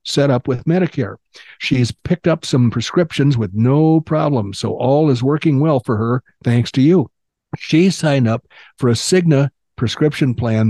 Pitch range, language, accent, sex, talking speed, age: 115-145 Hz, English, American, male, 170 wpm, 60-79